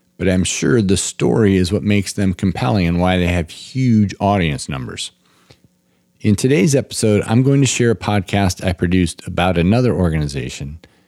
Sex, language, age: male, English, 40-59